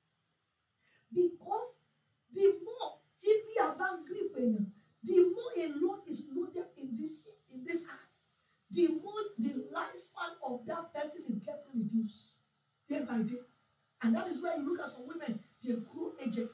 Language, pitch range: English, 290-385 Hz